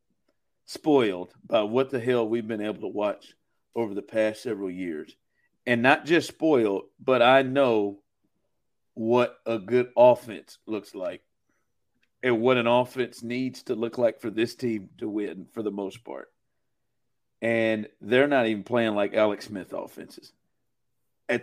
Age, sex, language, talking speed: 50-69, male, English, 155 wpm